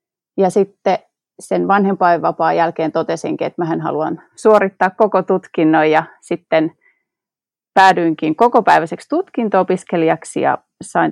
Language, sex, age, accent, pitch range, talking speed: Finnish, female, 30-49, native, 175-230 Hz, 105 wpm